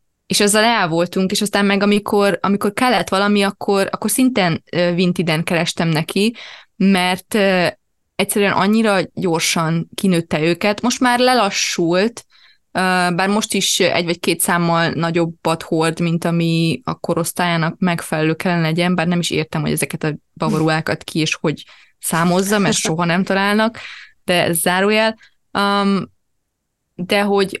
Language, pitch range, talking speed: Hungarian, 170-215 Hz, 145 wpm